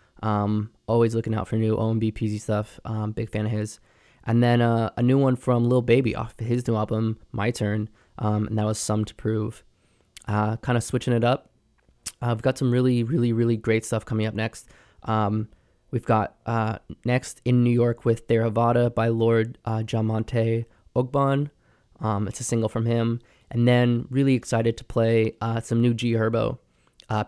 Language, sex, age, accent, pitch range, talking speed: English, male, 20-39, American, 110-120 Hz, 190 wpm